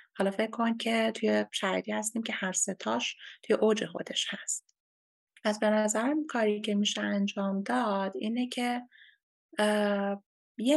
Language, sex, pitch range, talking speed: Persian, female, 185-215 Hz, 130 wpm